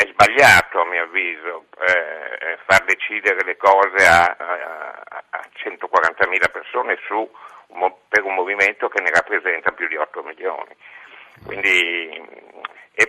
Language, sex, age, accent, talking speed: Italian, male, 60-79, native, 135 wpm